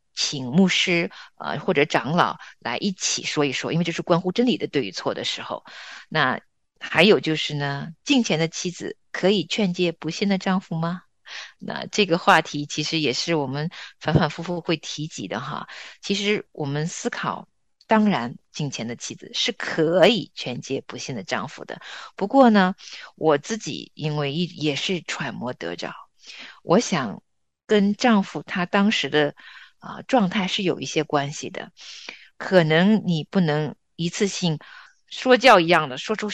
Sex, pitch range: female, 155-205 Hz